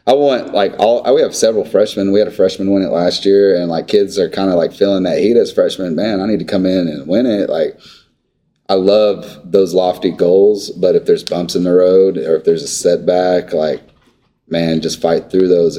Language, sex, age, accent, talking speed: English, male, 30-49, American, 230 wpm